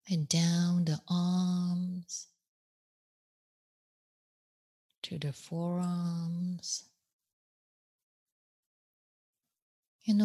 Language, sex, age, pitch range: English, female, 20-39, 175-190 Hz